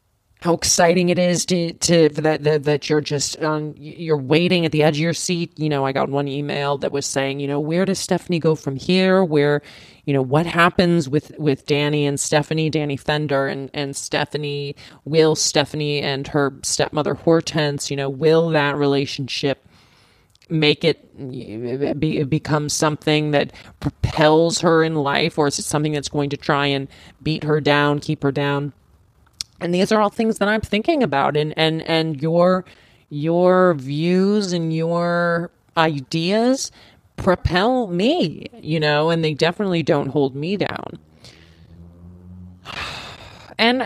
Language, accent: English, American